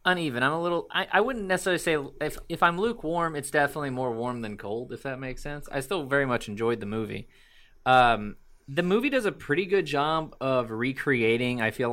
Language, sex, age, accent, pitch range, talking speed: English, male, 20-39, American, 110-145 Hz, 210 wpm